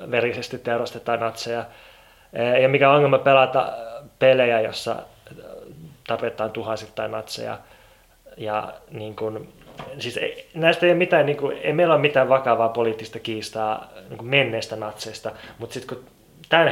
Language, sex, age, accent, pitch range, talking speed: Finnish, male, 20-39, native, 115-130 Hz, 135 wpm